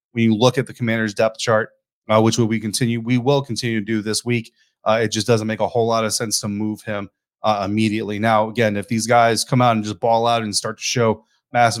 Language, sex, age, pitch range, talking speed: English, male, 30-49, 110-130 Hz, 260 wpm